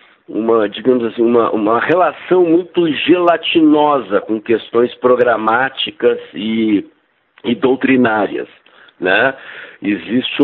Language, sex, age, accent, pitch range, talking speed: Portuguese, male, 60-79, Brazilian, 110-150 Hz, 90 wpm